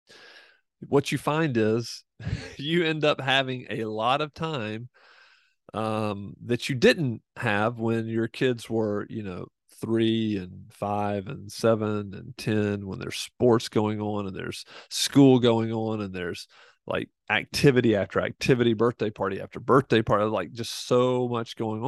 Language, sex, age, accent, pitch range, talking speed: English, male, 40-59, American, 110-135 Hz, 155 wpm